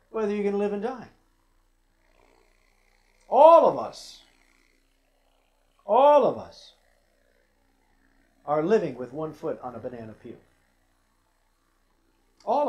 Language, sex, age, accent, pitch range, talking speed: English, male, 50-69, American, 130-195 Hz, 110 wpm